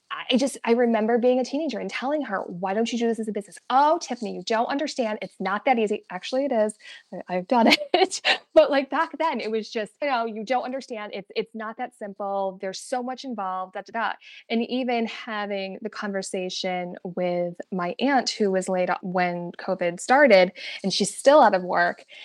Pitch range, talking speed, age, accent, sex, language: 195-265 Hz, 205 wpm, 20-39, American, female, English